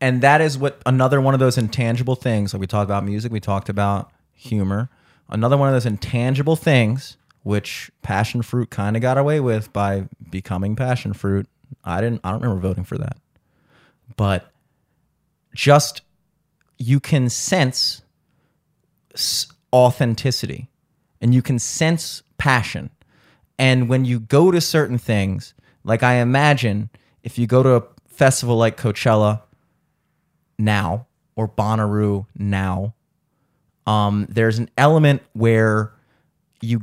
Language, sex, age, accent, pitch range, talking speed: English, male, 30-49, American, 105-135 Hz, 135 wpm